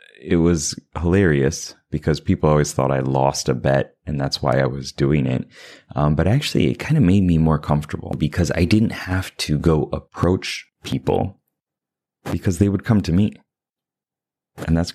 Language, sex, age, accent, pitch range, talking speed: English, male, 30-49, American, 70-95 Hz, 175 wpm